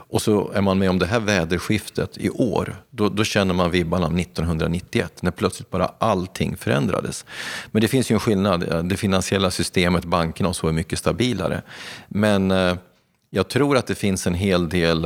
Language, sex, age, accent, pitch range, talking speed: Swedish, male, 40-59, native, 85-105 Hz, 190 wpm